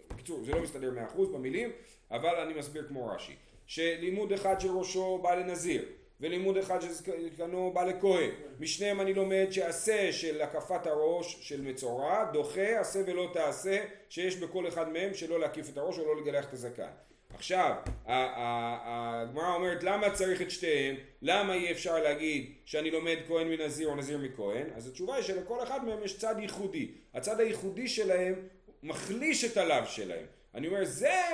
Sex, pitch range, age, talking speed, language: male, 155-205 Hz, 40-59, 180 wpm, Hebrew